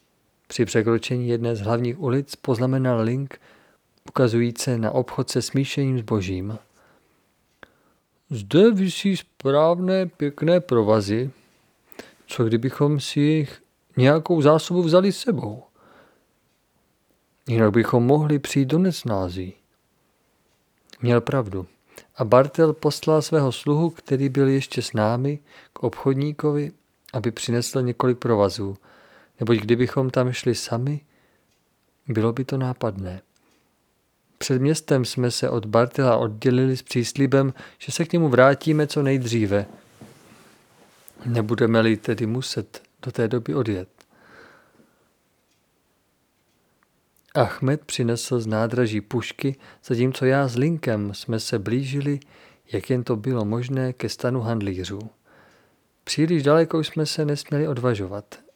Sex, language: male, Czech